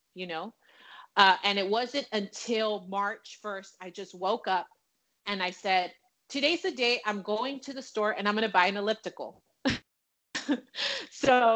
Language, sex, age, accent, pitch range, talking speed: English, female, 30-49, American, 190-240 Hz, 165 wpm